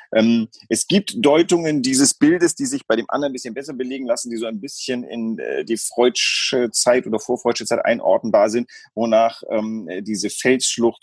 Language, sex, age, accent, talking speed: German, male, 30-49, German, 170 wpm